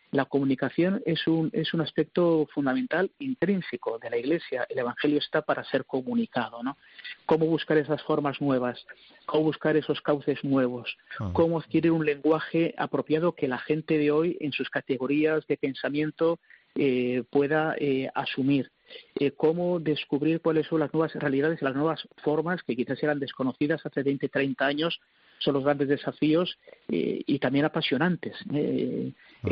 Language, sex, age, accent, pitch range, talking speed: Spanish, male, 40-59, Spanish, 135-155 Hz, 155 wpm